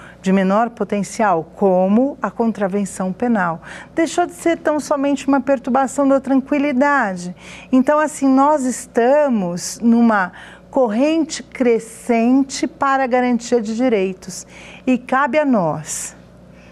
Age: 50-69